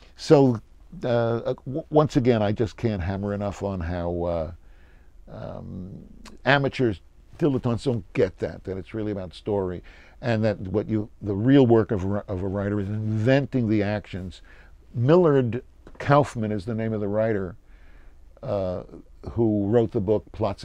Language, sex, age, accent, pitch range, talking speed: English, male, 50-69, American, 85-120 Hz, 155 wpm